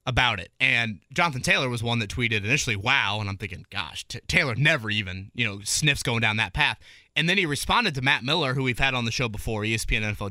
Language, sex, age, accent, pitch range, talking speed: English, male, 30-49, American, 110-150 Hz, 240 wpm